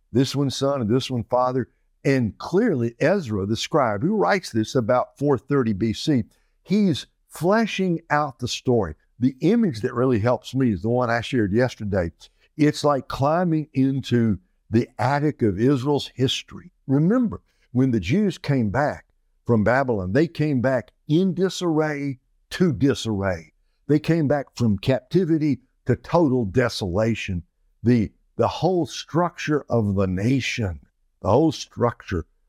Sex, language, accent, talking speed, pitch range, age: male, English, American, 140 wpm, 110-145 Hz, 60-79